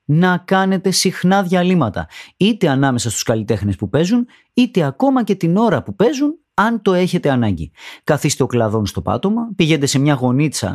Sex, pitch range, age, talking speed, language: male, 130-200 Hz, 30-49, 170 wpm, Greek